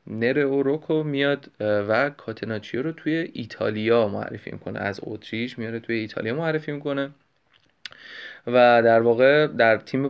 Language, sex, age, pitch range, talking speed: Persian, male, 30-49, 110-135 Hz, 130 wpm